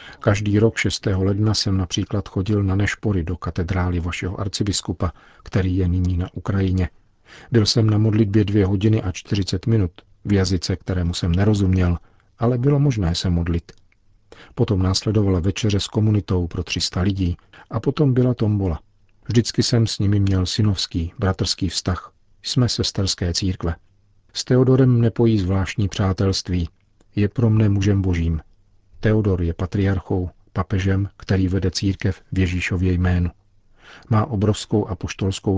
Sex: male